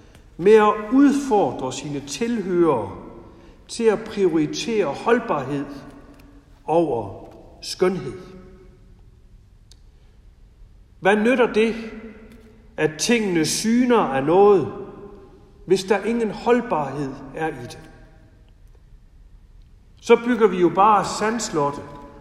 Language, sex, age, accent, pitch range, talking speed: Danish, male, 60-79, native, 130-215 Hz, 85 wpm